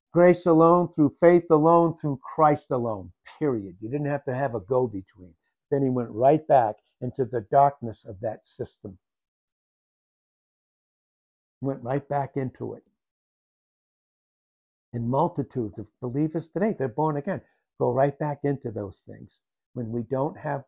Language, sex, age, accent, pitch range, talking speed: English, male, 60-79, American, 115-155 Hz, 145 wpm